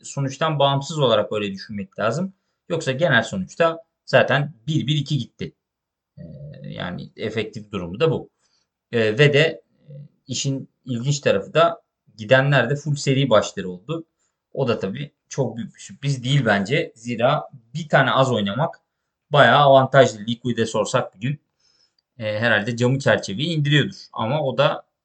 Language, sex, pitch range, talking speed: Turkish, male, 120-160 Hz, 130 wpm